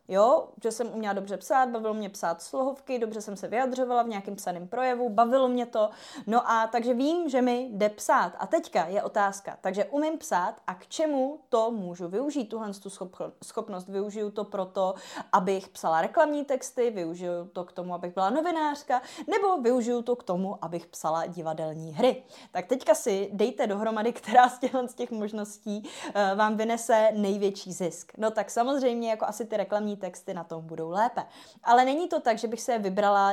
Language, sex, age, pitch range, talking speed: Czech, female, 20-39, 190-240 Hz, 180 wpm